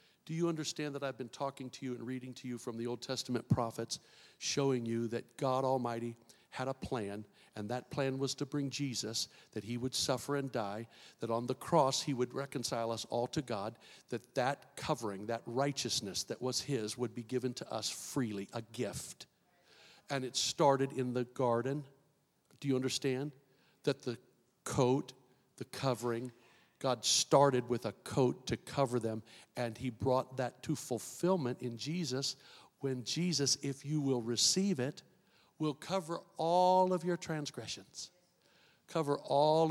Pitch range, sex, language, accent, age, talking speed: 120-150 Hz, male, English, American, 50-69, 170 wpm